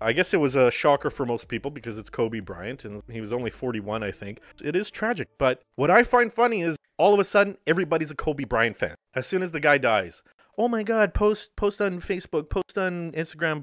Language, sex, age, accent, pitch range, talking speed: English, male, 30-49, American, 130-190 Hz, 240 wpm